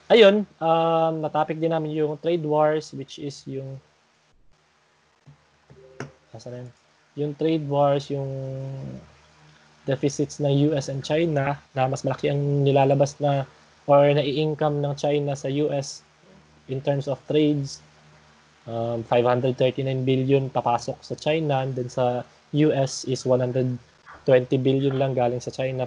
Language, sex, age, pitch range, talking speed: English, male, 20-39, 125-155 Hz, 125 wpm